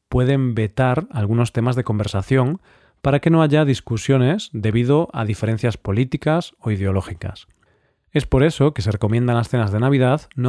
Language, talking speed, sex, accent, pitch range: Spanish, 165 wpm, male, Spanish, 110-140 Hz